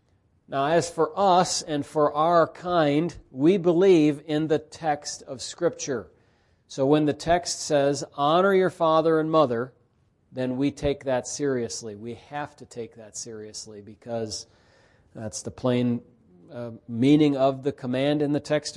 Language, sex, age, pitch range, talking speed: English, male, 40-59, 115-145 Hz, 155 wpm